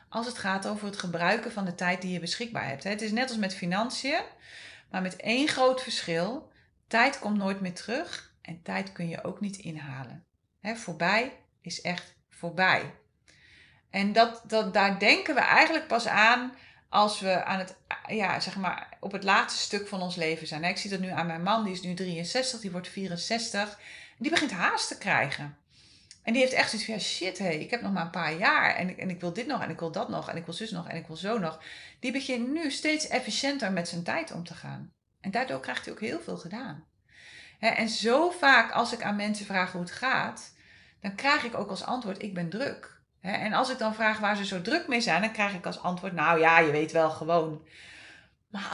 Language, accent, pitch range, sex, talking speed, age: Dutch, Dutch, 175-230 Hz, female, 215 wpm, 30-49